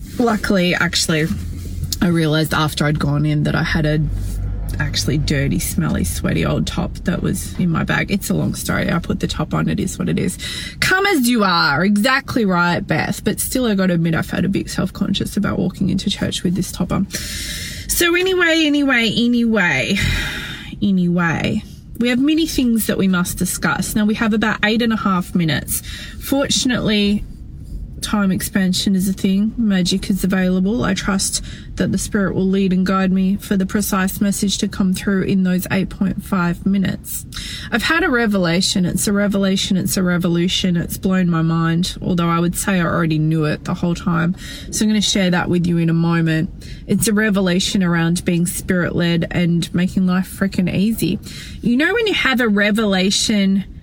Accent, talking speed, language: Australian, 185 wpm, English